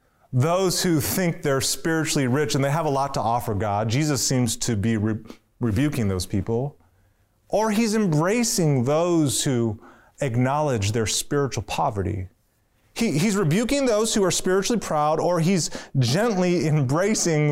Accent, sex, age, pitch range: American, male, 30-49, 120-190 Hz